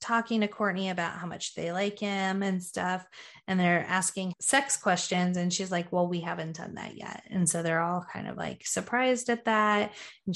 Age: 20-39